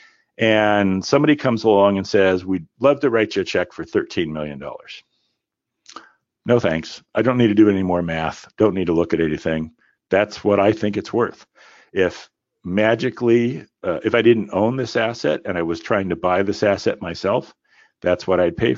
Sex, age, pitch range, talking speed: male, 50-69, 80-120 Hz, 190 wpm